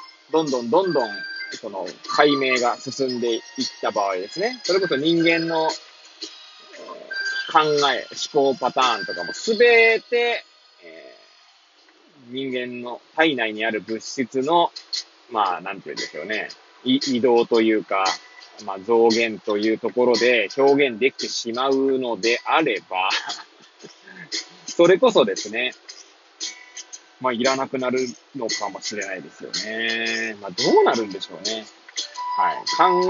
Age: 20-39